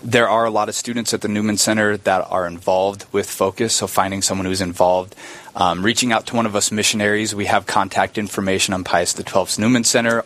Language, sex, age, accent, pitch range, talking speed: English, male, 20-39, American, 100-115 Hz, 215 wpm